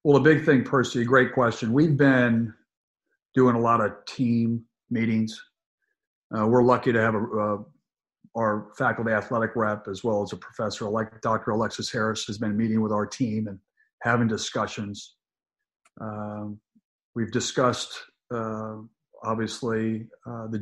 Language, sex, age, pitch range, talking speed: English, male, 50-69, 110-125 Hz, 150 wpm